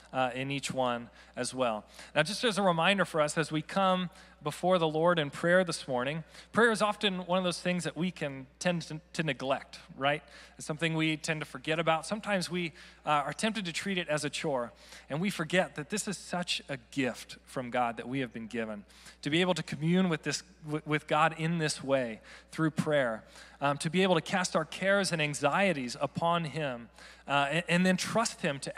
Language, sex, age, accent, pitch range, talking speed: English, male, 40-59, American, 140-180 Hz, 220 wpm